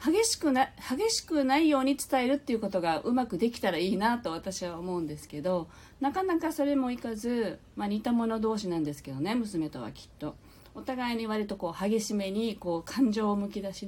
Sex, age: female, 40-59